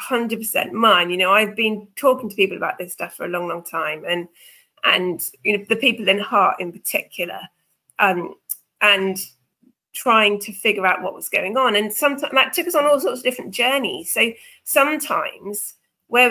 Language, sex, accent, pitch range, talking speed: English, female, British, 195-245 Hz, 190 wpm